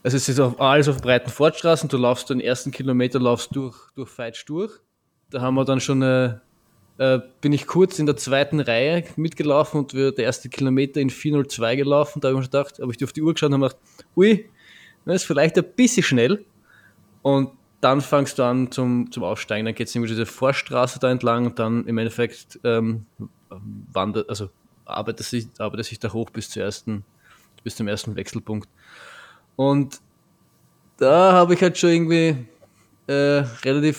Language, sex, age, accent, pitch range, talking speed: German, male, 20-39, German, 115-145 Hz, 190 wpm